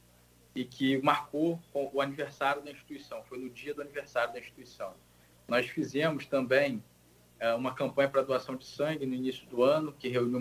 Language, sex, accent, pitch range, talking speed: Portuguese, male, Brazilian, 115-155 Hz, 165 wpm